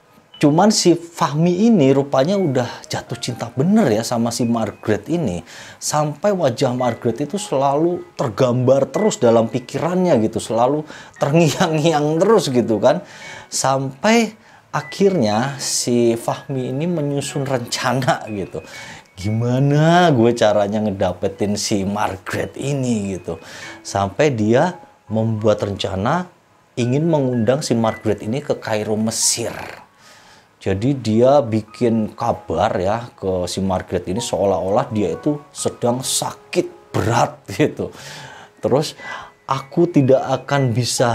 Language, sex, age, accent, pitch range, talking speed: Indonesian, male, 30-49, native, 105-145 Hz, 115 wpm